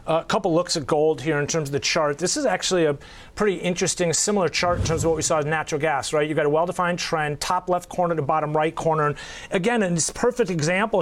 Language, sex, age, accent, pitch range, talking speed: English, male, 30-49, American, 165-200 Hz, 265 wpm